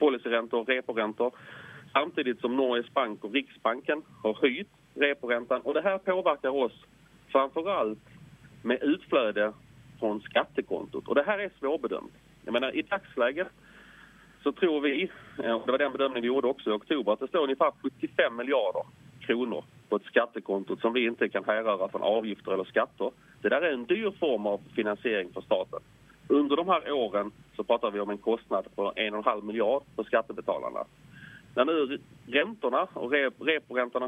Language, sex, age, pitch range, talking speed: English, male, 30-49, 115-150 Hz, 165 wpm